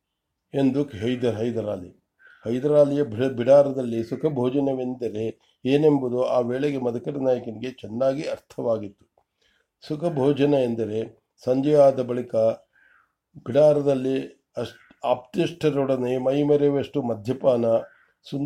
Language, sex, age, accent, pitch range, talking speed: English, male, 50-69, Indian, 120-145 Hz, 60 wpm